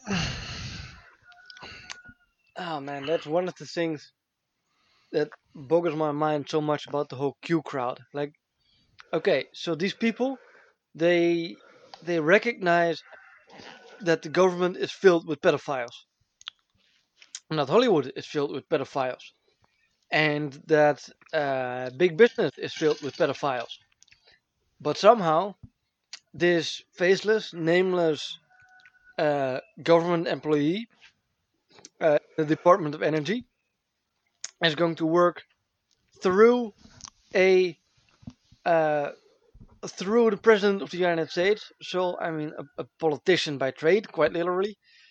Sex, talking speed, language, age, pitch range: male, 115 wpm, English, 20-39, 155-195 Hz